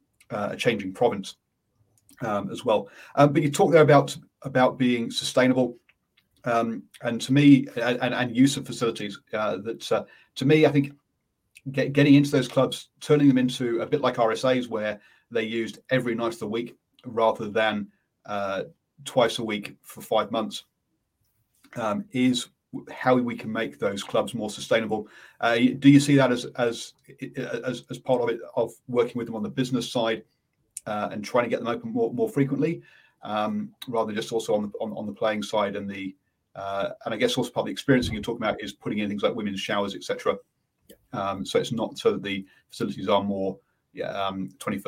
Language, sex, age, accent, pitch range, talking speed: English, male, 30-49, British, 105-135 Hz, 195 wpm